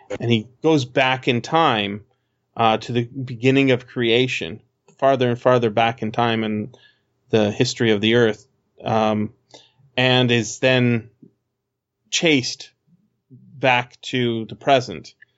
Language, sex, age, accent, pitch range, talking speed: English, male, 20-39, American, 115-140 Hz, 130 wpm